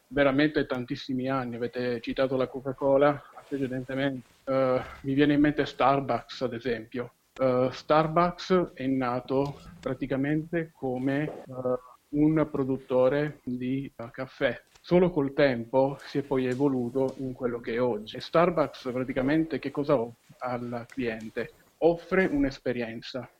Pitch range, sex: 125-145 Hz, male